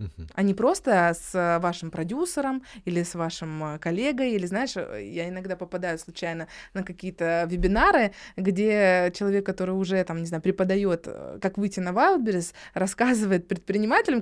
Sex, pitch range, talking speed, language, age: female, 185-235 Hz, 140 wpm, Russian, 20-39